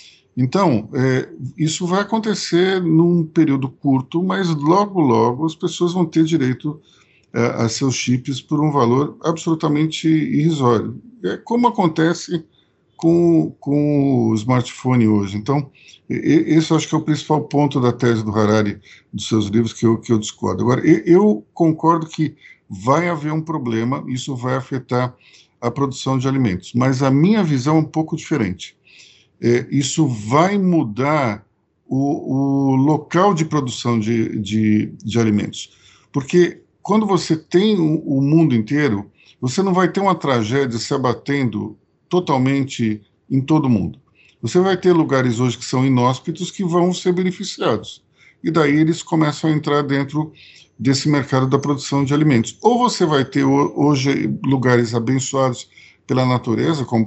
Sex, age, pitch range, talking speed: male, 50-69, 120-165 Hz, 150 wpm